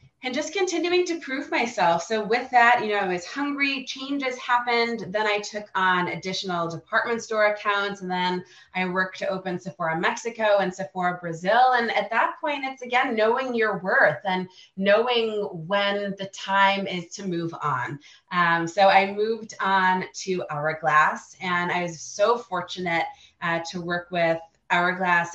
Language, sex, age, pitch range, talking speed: English, female, 30-49, 180-225 Hz, 165 wpm